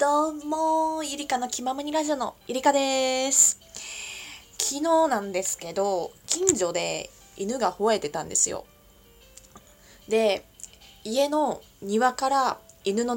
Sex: female